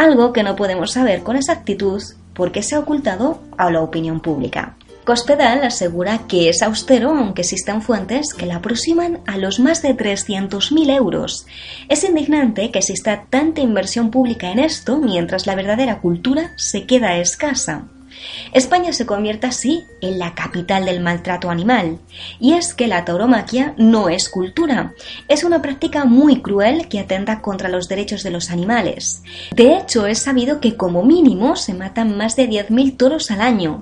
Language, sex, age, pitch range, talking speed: Spanish, female, 20-39, 195-265 Hz, 165 wpm